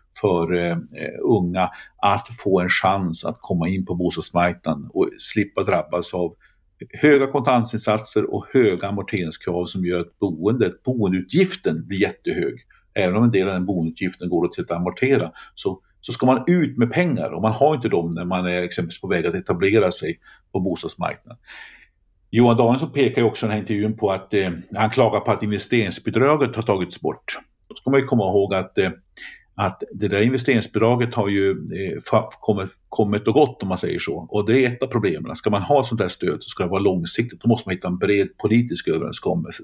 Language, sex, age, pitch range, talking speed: Swedish, male, 50-69, 90-120 Hz, 195 wpm